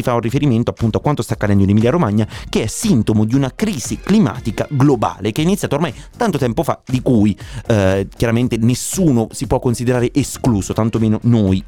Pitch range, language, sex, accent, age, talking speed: 110-150 Hz, Italian, male, native, 30-49, 190 wpm